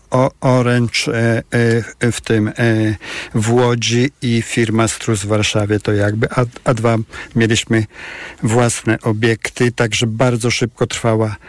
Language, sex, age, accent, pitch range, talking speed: Polish, male, 50-69, native, 115-125 Hz, 125 wpm